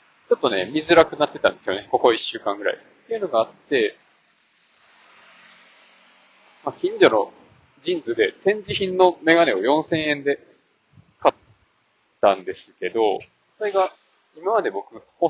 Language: Japanese